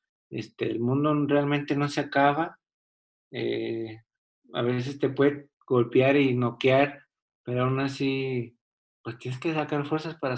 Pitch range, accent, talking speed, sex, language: 125-145 Hz, Mexican, 140 wpm, male, Spanish